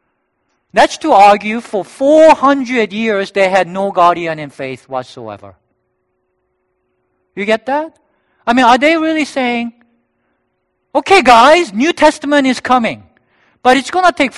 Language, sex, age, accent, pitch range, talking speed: English, male, 50-69, Japanese, 190-290 Hz, 140 wpm